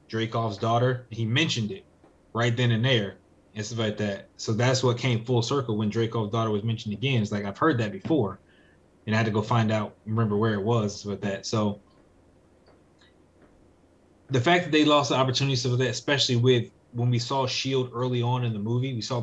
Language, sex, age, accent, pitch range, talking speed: English, male, 20-39, American, 105-125 Hz, 210 wpm